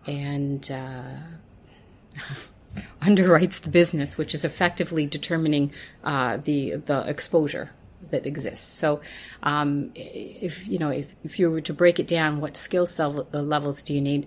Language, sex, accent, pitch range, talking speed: English, female, American, 145-170 Hz, 145 wpm